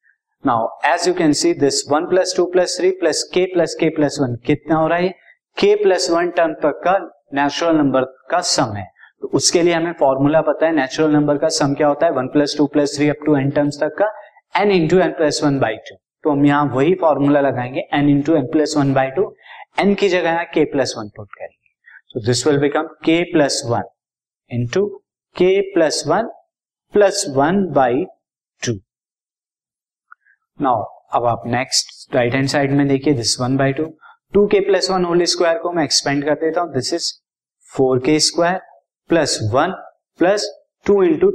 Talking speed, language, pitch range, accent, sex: 145 wpm, Hindi, 140-180 Hz, native, male